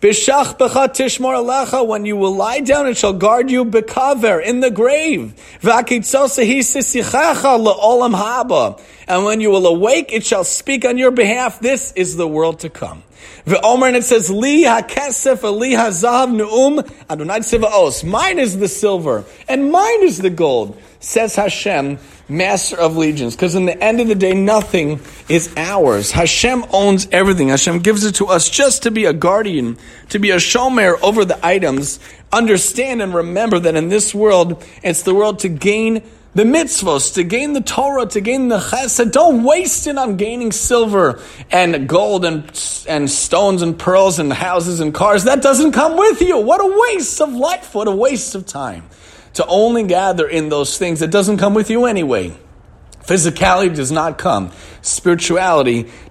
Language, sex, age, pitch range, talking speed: English, male, 40-59, 175-250 Hz, 160 wpm